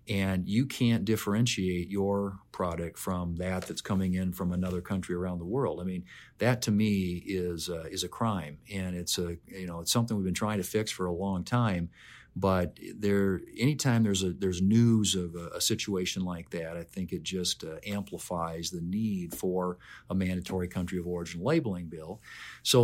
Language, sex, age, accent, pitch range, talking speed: English, male, 50-69, American, 90-105 Hz, 190 wpm